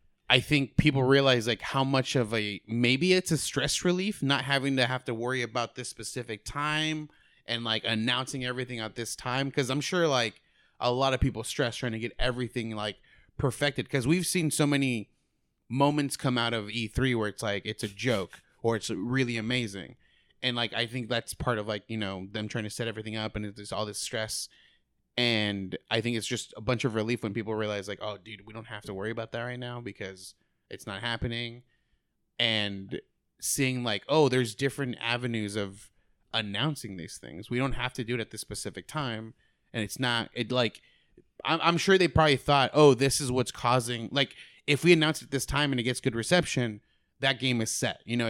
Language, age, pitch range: English, 20-39, 110-135 Hz